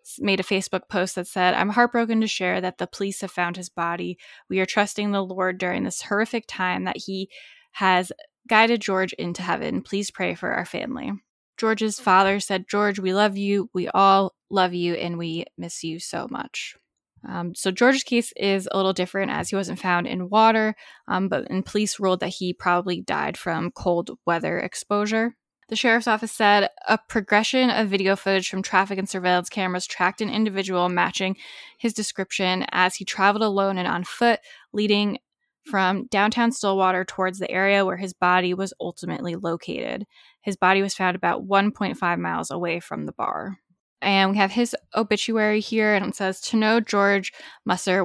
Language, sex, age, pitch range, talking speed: English, female, 10-29, 185-215 Hz, 180 wpm